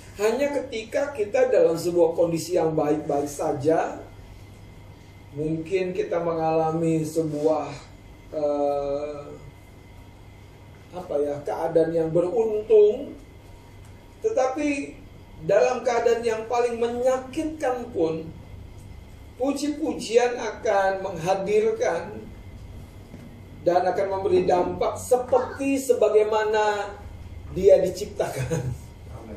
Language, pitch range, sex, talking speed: Indonesian, 140-235 Hz, male, 75 wpm